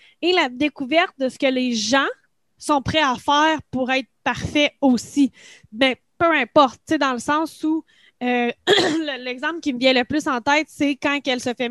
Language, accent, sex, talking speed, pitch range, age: French, Canadian, female, 195 wpm, 255-315 Hz, 10-29